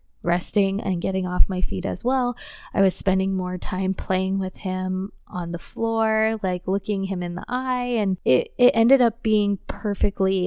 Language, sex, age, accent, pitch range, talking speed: English, female, 20-39, American, 180-210 Hz, 185 wpm